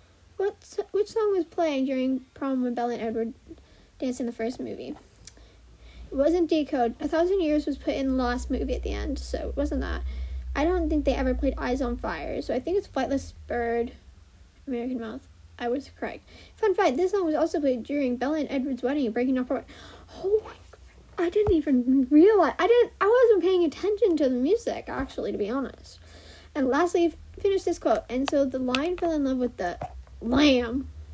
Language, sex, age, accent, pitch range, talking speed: English, female, 40-59, American, 250-360 Hz, 200 wpm